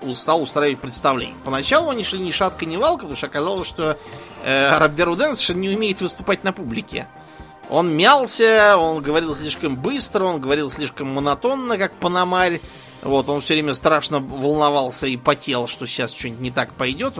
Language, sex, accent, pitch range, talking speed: Russian, male, native, 135-185 Hz, 170 wpm